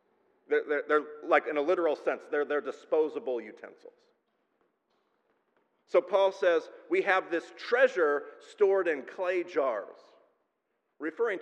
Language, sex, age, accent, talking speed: English, male, 40-59, American, 125 wpm